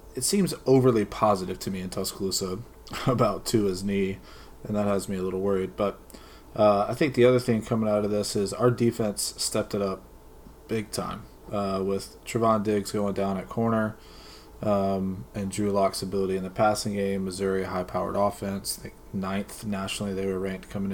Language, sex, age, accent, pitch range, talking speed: English, male, 20-39, American, 95-115 Hz, 185 wpm